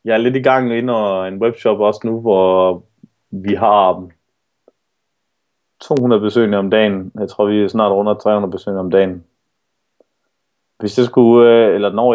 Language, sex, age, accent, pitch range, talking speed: Danish, male, 20-39, native, 95-115 Hz, 160 wpm